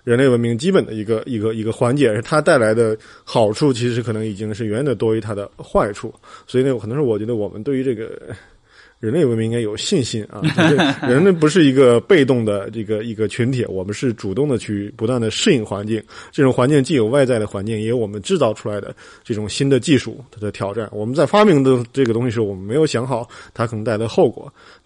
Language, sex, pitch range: Chinese, male, 110-135 Hz